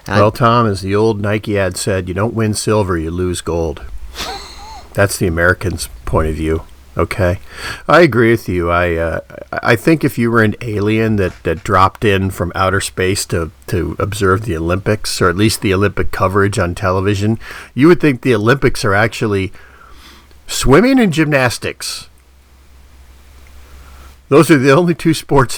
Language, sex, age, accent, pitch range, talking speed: English, male, 50-69, American, 90-130 Hz, 165 wpm